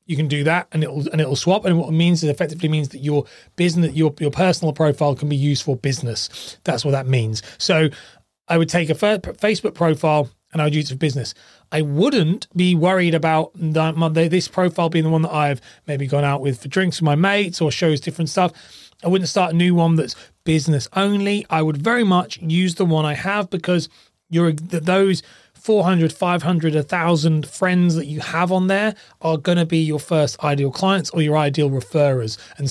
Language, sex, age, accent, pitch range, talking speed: English, male, 30-49, British, 145-180 Hz, 210 wpm